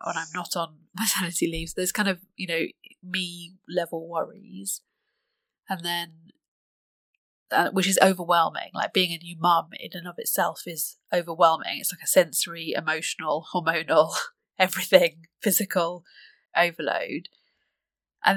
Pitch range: 165-190 Hz